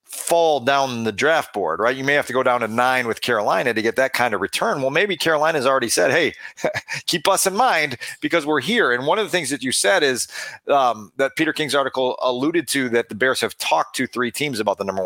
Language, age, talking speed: English, 40-59, 245 wpm